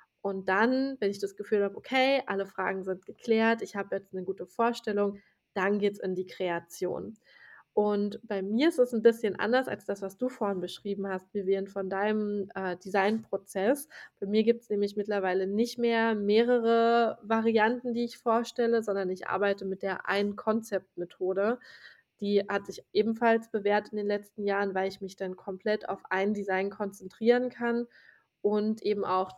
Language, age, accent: German, 20-39, German